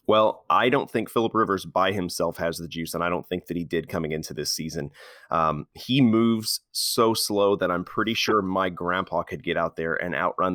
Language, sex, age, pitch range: English, male, 30-49, 85-100 Hz